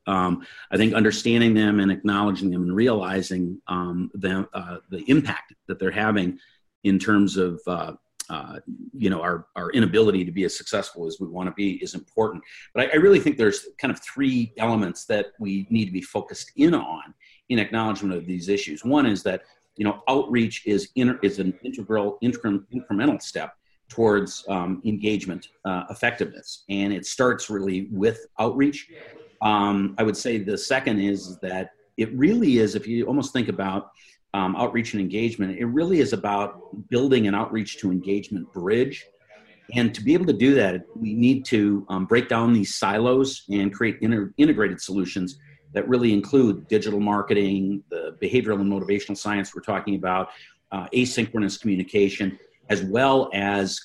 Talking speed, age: 175 wpm, 40-59